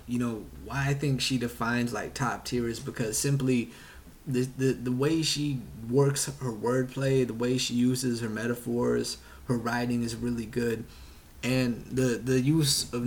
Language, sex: English, male